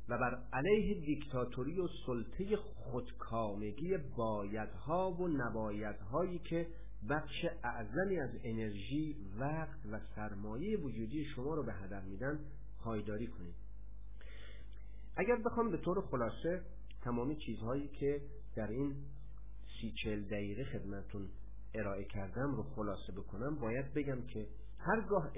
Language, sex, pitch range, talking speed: Persian, male, 105-145 Hz, 115 wpm